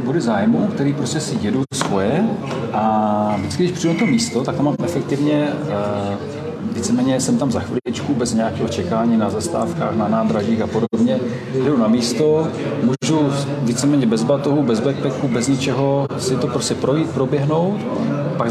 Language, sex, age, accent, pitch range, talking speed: Czech, male, 40-59, native, 115-145 Hz, 160 wpm